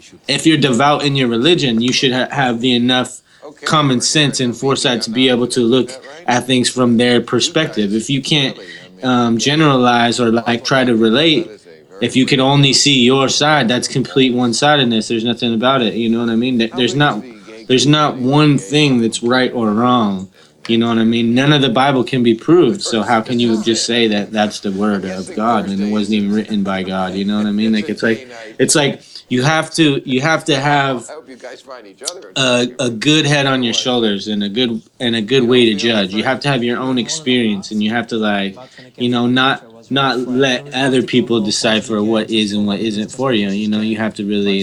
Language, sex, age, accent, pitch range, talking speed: English, male, 20-39, American, 110-130 Hz, 220 wpm